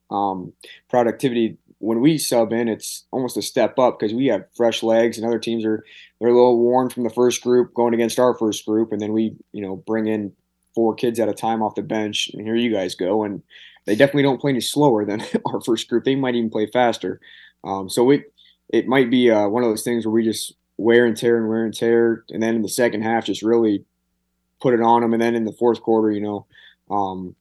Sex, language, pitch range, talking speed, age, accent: male, English, 105-120 Hz, 245 wpm, 20-39, American